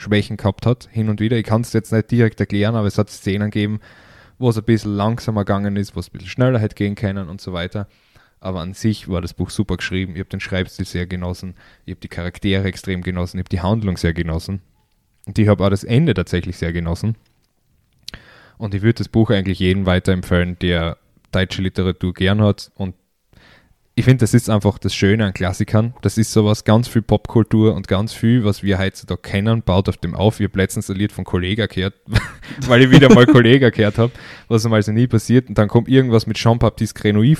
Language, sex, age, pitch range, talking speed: German, male, 10-29, 95-115 Hz, 225 wpm